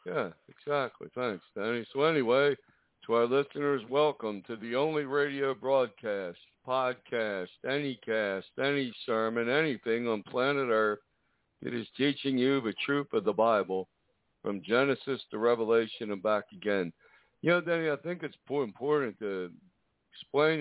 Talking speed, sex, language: 145 wpm, male, English